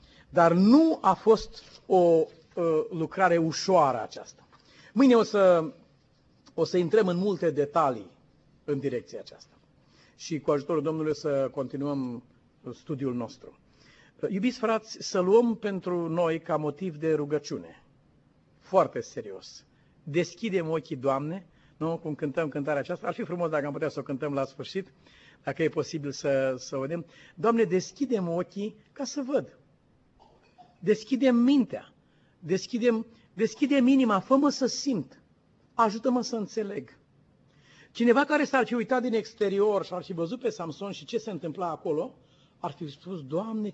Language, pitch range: Romanian, 150-230 Hz